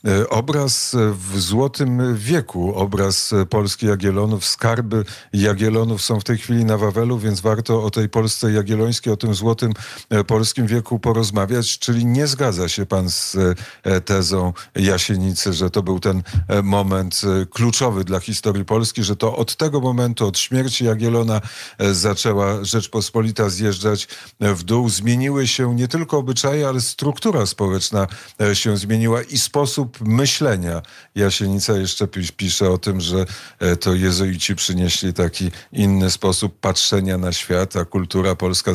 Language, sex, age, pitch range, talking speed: Polish, male, 50-69, 95-115 Hz, 135 wpm